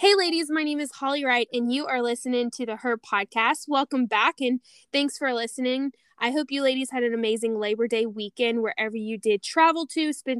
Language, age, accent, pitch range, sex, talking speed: English, 10-29, American, 230-275 Hz, female, 215 wpm